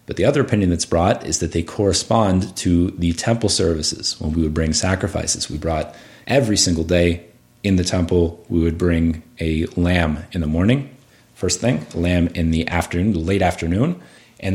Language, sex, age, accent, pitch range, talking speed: English, male, 30-49, American, 85-105 Hz, 190 wpm